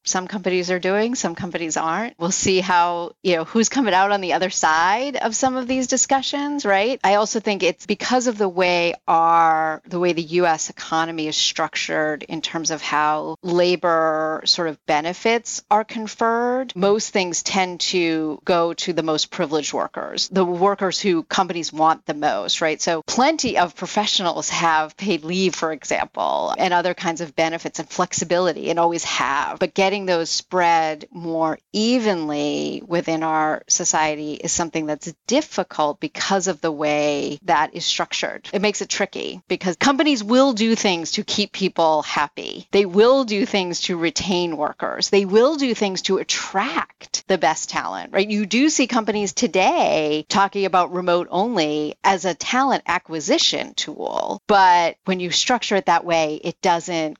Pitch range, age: 160-205 Hz, 40-59